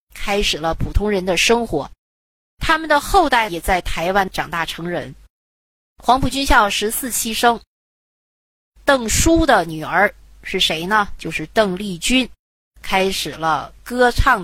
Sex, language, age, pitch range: female, Chinese, 30-49, 175-235 Hz